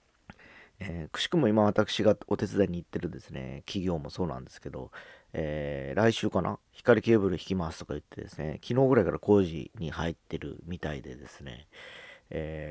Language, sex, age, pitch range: Japanese, male, 40-59, 80-105 Hz